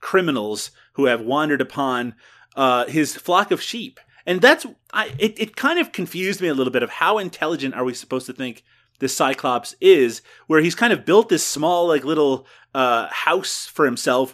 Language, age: English, 30-49